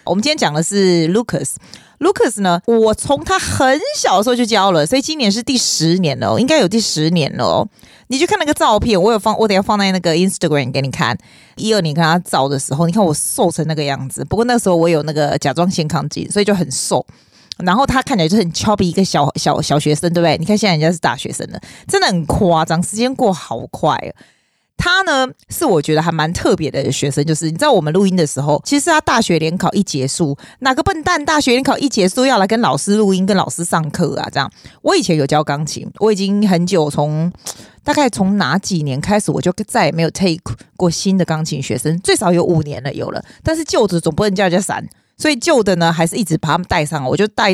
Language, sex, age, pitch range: Chinese, female, 20-39, 155-215 Hz